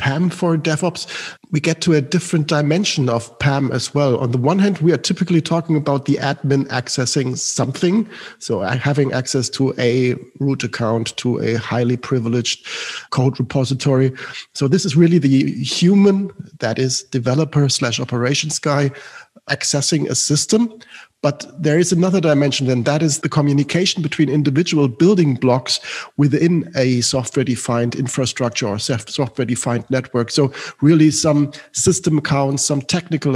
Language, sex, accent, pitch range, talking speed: English, male, German, 130-160 Hz, 145 wpm